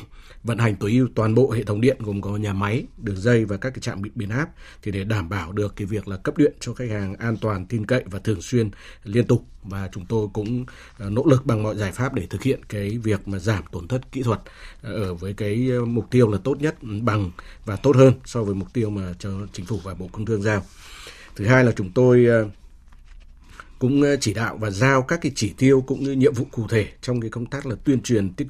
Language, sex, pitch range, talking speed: Vietnamese, male, 100-125 Hz, 255 wpm